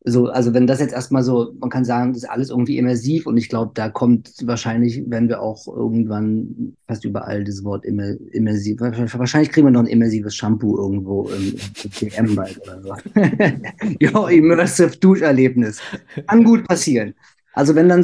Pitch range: 115-135 Hz